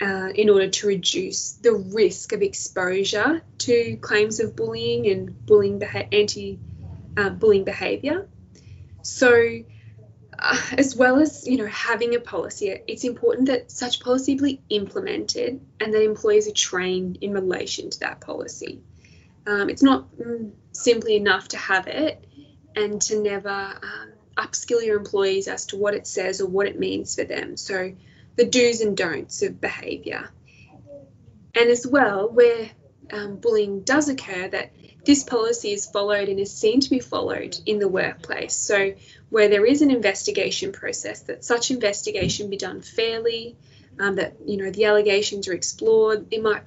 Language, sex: English, female